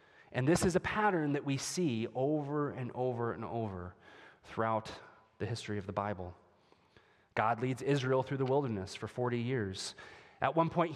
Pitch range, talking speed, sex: 110-150 Hz, 170 wpm, male